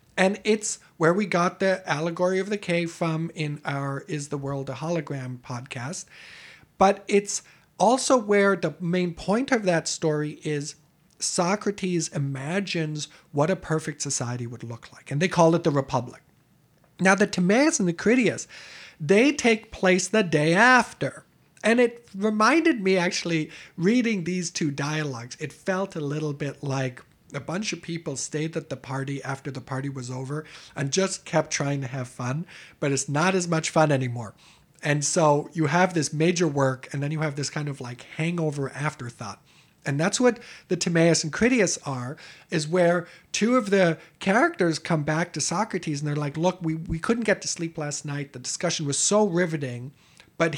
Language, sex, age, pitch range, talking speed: English, male, 50-69, 145-190 Hz, 180 wpm